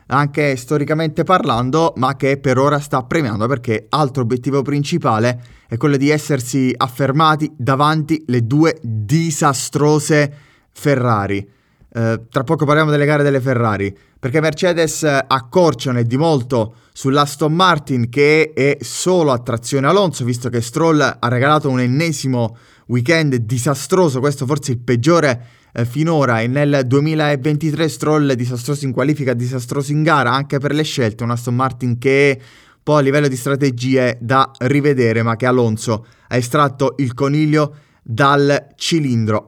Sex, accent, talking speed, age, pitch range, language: male, native, 140 wpm, 20-39, 125-150 Hz, Italian